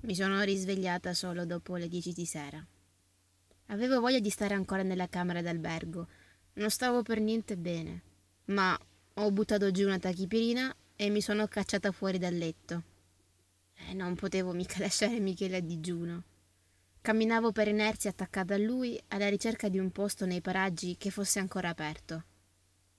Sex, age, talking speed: female, 20-39, 155 wpm